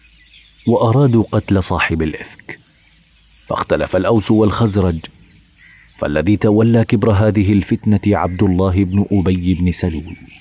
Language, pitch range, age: Arabic, 90-105 Hz, 40-59